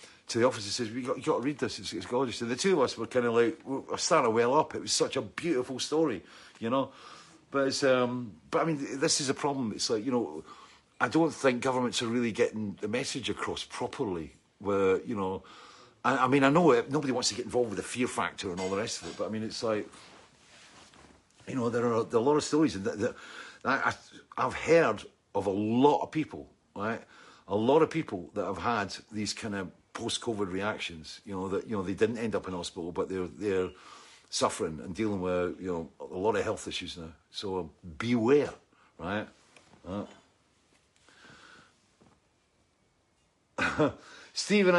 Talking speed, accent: 215 wpm, British